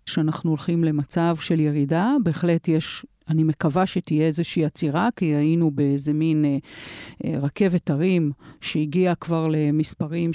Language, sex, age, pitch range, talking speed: Hebrew, female, 50-69, 160-205 Hz, 135 wpm